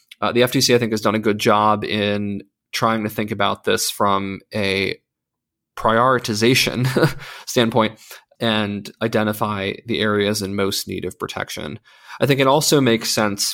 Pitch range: 105-125 Hz